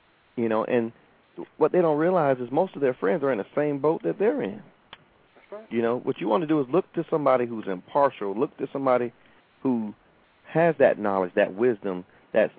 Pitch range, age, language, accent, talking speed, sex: 105-135 Hz, 40-59, English, American, 205 wpm, male